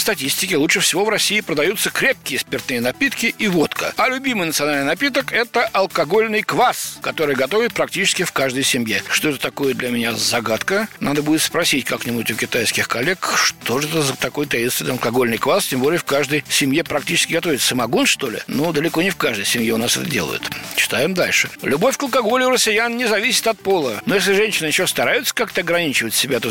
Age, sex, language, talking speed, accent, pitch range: 60-79, male, Russian, 190 wpm, native, 140-220 Hz